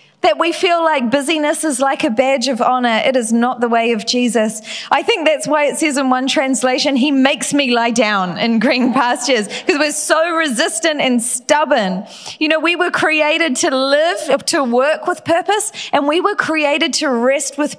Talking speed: 200 wpm